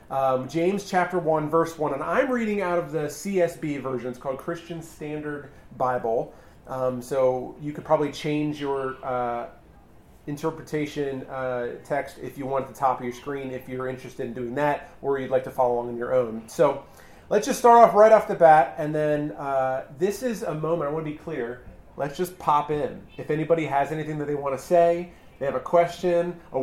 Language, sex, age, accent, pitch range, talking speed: English, male, 30-49, American, 135-175 Hz, 210 wpm